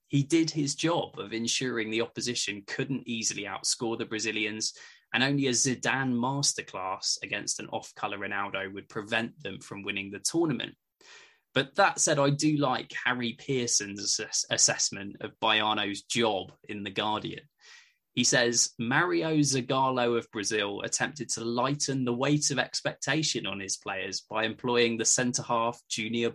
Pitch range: 115-150 Hz